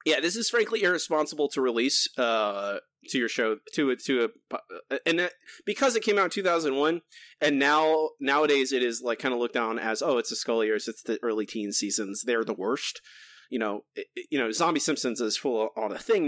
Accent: American